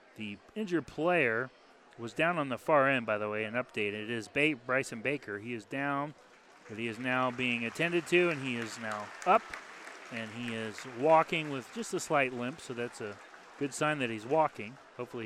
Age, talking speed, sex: 30-49, 205 wpm, male